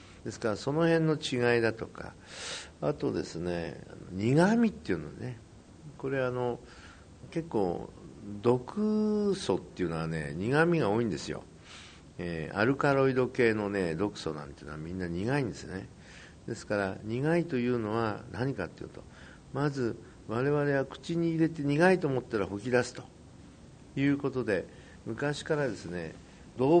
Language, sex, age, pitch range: Japanese, male, 50-69, 100-155 Hz